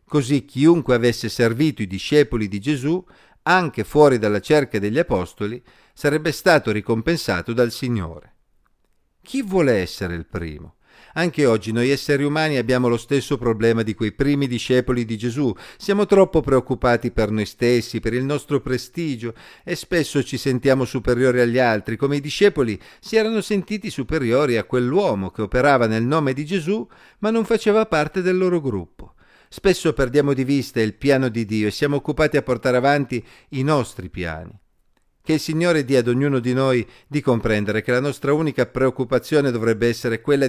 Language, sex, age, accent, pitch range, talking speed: Italian, male, 50-69, native, 110-150 Hz, 165 wpm